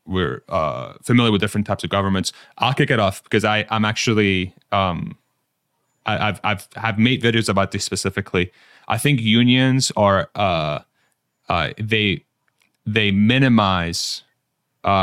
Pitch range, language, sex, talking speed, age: 100-115 Hz, English, male, 145 wpm, 30-49